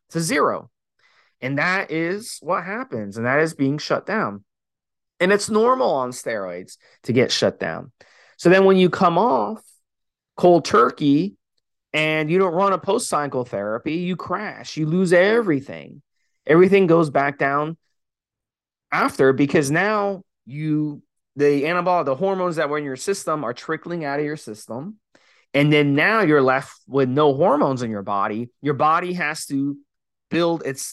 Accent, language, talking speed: American, English, 160 wpm